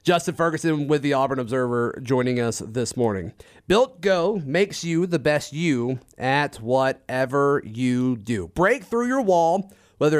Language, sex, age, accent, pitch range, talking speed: English, male, 30-49, American, 130-165 Hz, 155 wpm